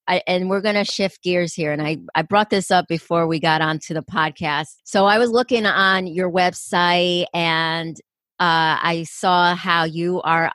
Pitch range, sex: 165-205 Hz, female